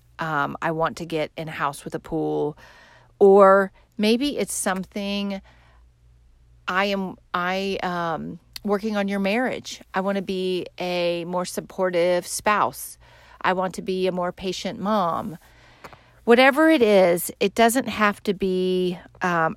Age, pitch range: 40-59, 170-210 Hz